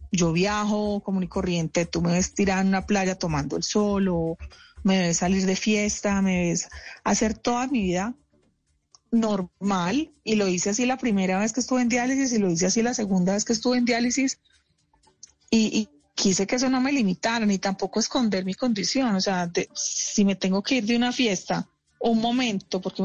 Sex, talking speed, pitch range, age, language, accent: female, 200 wpm, 190-240 Hz, 30-49, Spanish, Colombian